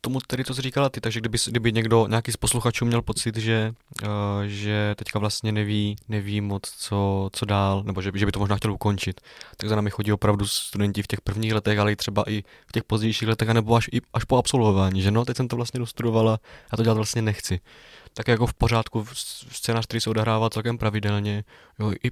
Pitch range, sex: 105-120 Hz, male